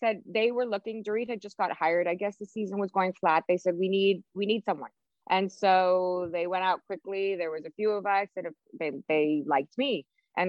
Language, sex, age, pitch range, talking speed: English, female, 20-39, 180-245 Hz, 235 wpm